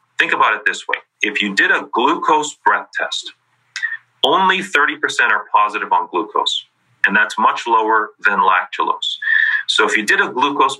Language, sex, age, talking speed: English, male, 30-49, 165 wpm